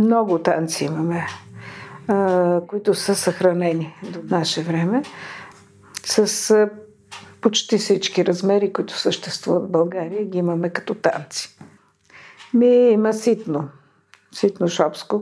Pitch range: 165-195 Hz